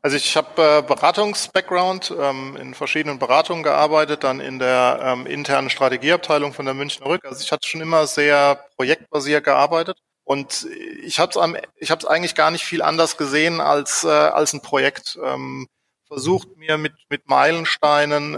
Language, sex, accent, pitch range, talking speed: German, male, German, 135-160 Hz, 160 wpm